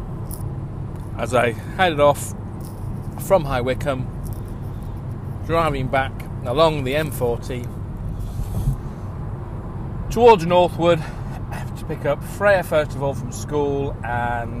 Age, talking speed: 30-49, 105 wpm